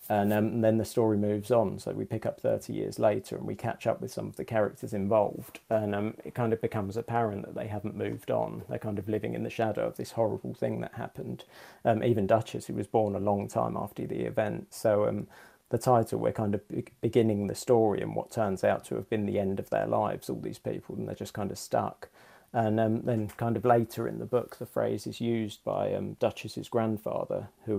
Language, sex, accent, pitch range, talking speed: English, male, British, 105-115 Hz, 240 wpm